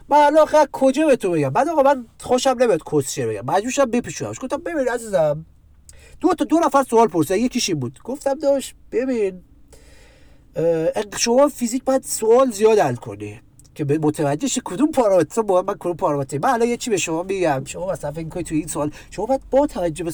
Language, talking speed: Persian, 190 wpm